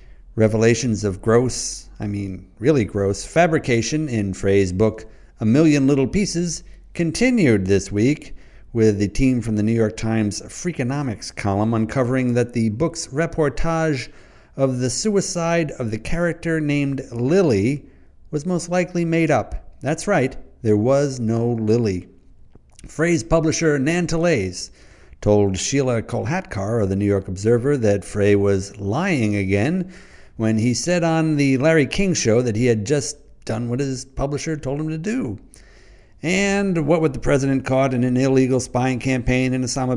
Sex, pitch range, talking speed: male, 110-160 Hz, 150 wpm